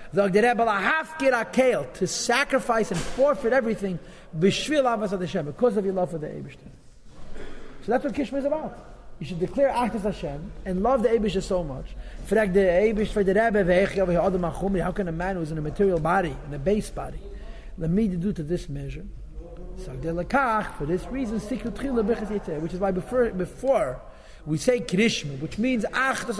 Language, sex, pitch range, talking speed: English, male, 180-245 Hz, 145 wpm